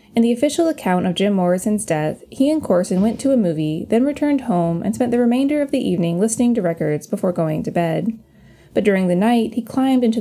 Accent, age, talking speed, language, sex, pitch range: American, 20-39, 230 wpm, English, female, 175-240 Hz